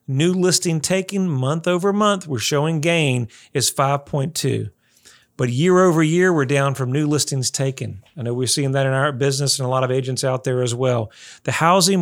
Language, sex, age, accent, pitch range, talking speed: English, male, 40-59, American, 130-155 Hz, 200 wpm